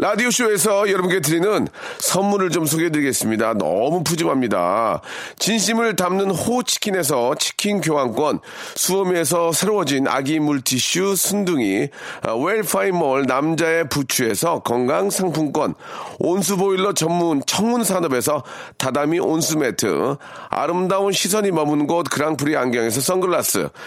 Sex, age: male, 40-59